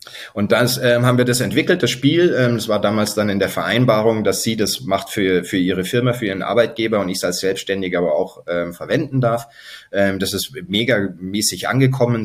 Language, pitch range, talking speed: German, 100-125 Hz, 210 wpm